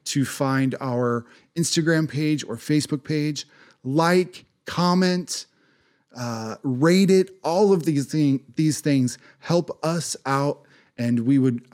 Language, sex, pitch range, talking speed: English, male, 120-155 Hz, 130 wpm